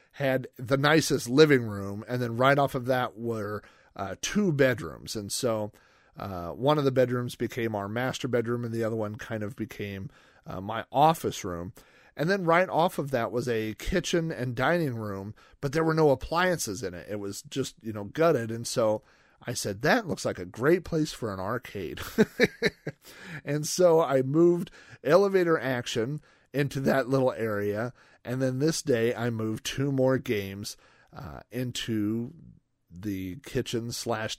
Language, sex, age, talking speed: English, male, 40-59, 175 wpm